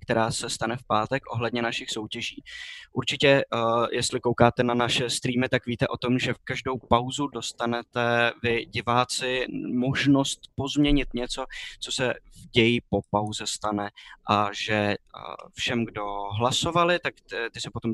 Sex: male